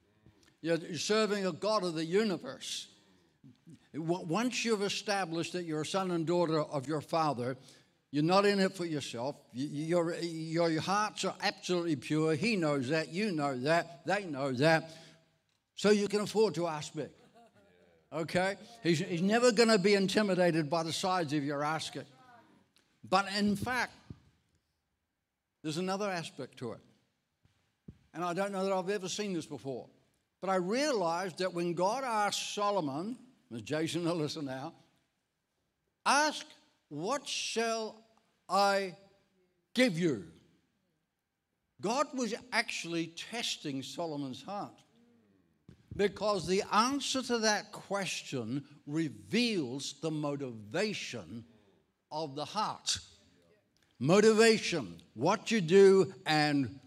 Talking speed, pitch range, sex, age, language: 130 wpm, 145-205 Hz, male, 60-79, English